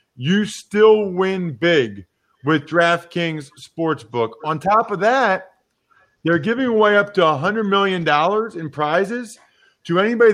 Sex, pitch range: male, 145-200 Hz